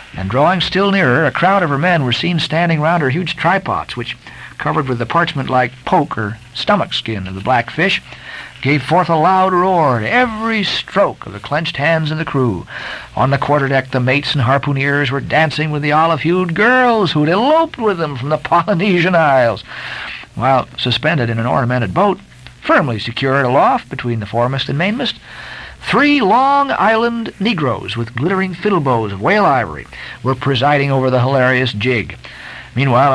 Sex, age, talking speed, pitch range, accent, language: male, 60-79, 175 wpm, 130-190 Hz, American, English